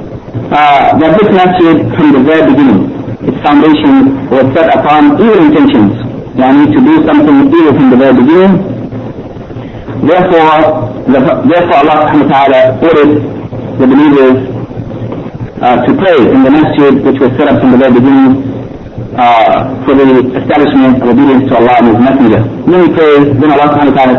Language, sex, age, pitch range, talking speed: English, male, 50-69, 130-155 Hz, 160 wpm